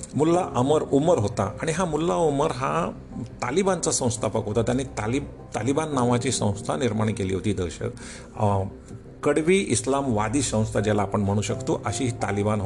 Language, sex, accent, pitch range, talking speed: Marathi, male, native, 110-145 Hz, 145 wpm